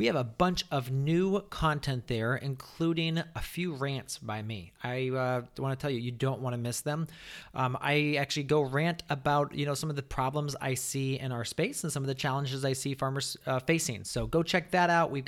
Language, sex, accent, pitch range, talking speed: English, male, American, 130-165 Hz, 230 wpm